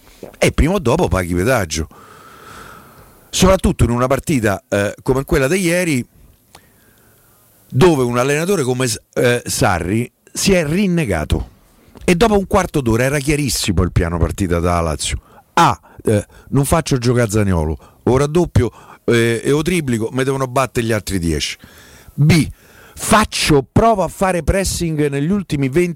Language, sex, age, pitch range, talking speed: Italian, male, 50-69, 110-155 Hz, 145 wpm